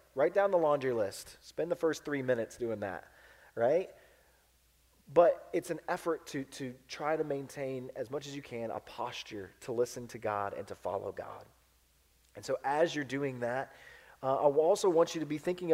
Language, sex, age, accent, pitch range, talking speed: English, male, 30-49, American, 105-150 Hz, 195 wpm